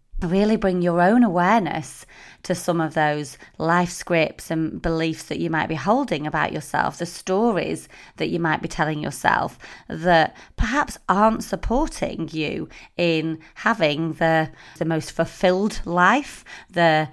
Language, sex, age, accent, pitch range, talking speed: English, female, 30-49, British, 160-195 Hz, 145 wpm